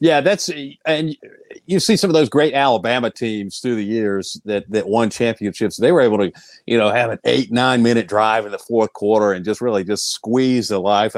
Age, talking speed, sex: 40-59, 215 wpm, male